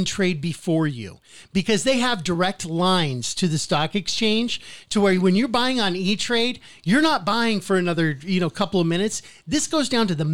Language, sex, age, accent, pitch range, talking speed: English, male, 40-59, American, 165-205 Hz, 195 wpm